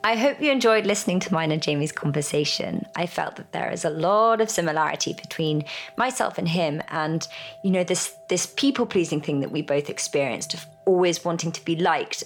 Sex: female